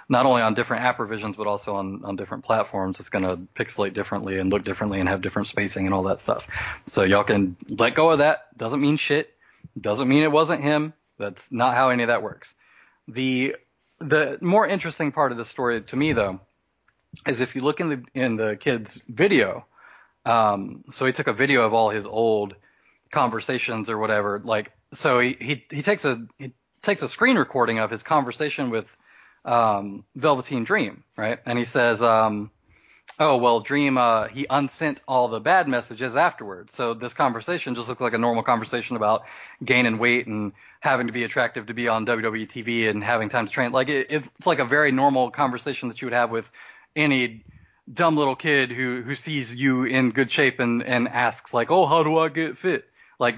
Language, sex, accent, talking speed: English, male, American, 200 wpm